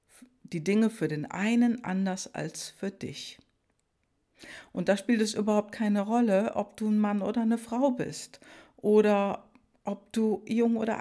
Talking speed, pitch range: 160 wpm, 180-230 Hz